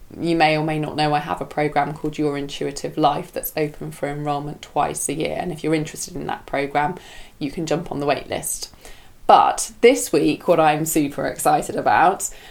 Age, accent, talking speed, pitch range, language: 20-39, British, 205 wpm, 155-185 Hz, English